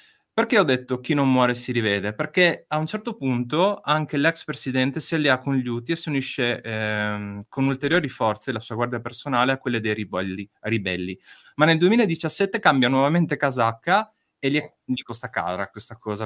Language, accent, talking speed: Italian, native, 185 wpm